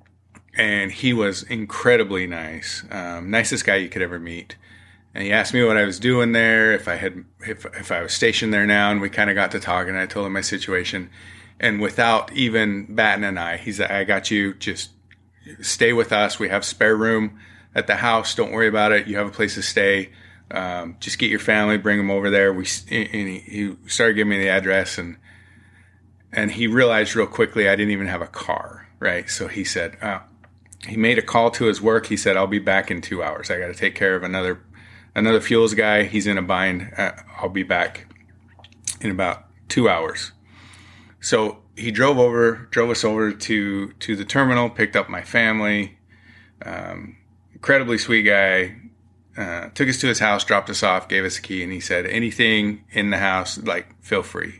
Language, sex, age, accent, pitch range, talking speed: English, male, 30-49, American, 95-110 Hz, 210 wpm